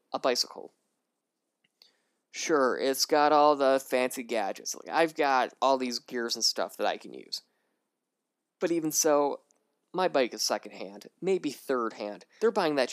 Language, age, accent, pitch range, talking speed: English, 20-39, American, 125-165 Hz, 150 wpm